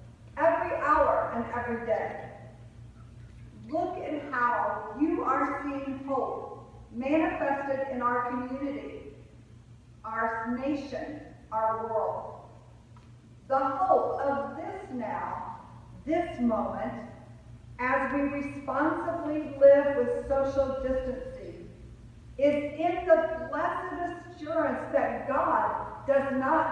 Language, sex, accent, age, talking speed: English, female, American, 50-69, 95 wpm